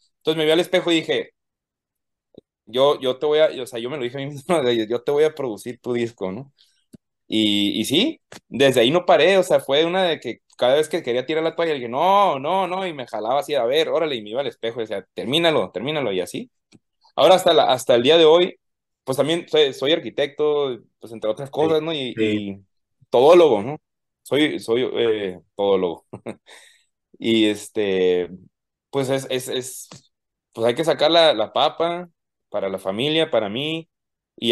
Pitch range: 110-165 Hz